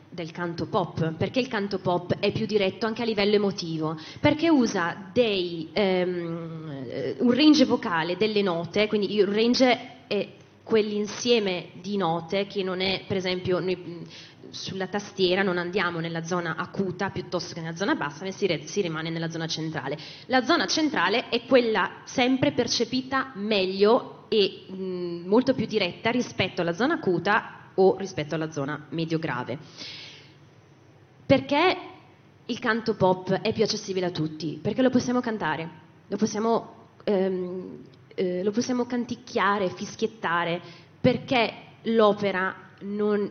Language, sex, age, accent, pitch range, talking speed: Italian, female, 20-39, native, 170-225 Hz, 135 wpm